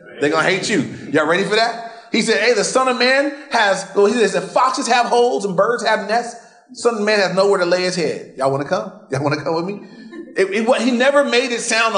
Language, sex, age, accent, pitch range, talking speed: English, male, 30-49, American, 165-235 Hz, 275 wpm